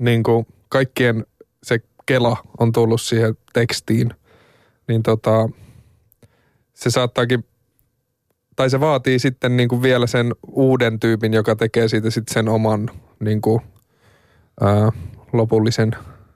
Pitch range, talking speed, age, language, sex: 110-120 Hz, 110 wpm, 20-39, Finnish, male